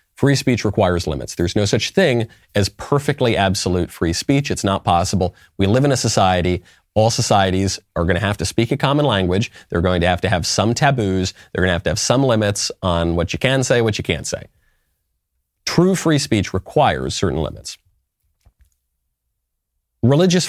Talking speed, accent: 185 wpm, American